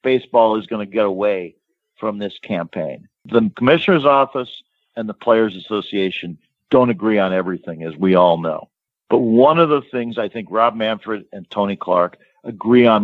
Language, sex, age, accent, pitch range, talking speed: English, male, 50-69, American, 100-125 Hz, 175 wpm